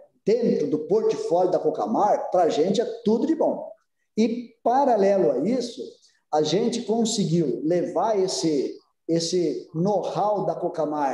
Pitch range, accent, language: 165-225 Hz, Brazilian, Portuguese